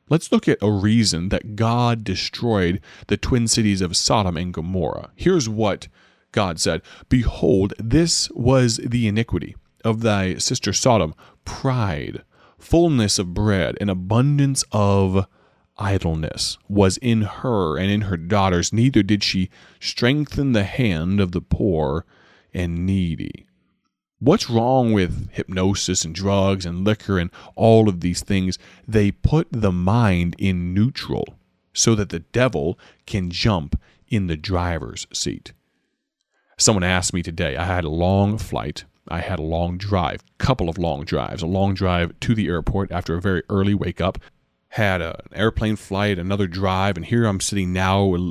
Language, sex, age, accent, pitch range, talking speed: English, male, 30-49, American, 90-110 Hz, 155 wpm